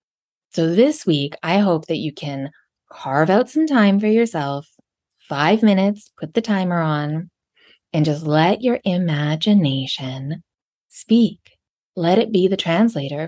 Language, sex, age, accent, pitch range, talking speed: English, female, 20-39, American, 150-205 Hz, 140 wpm